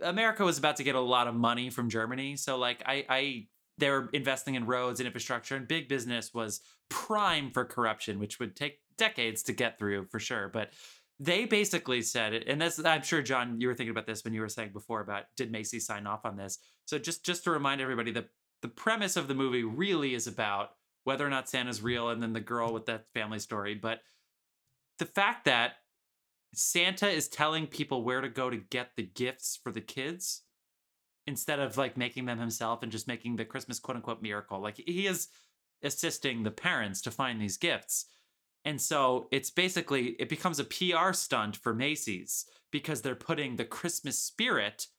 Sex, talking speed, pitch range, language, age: male, 200 wpm, 115-145 Hz, English, 20-39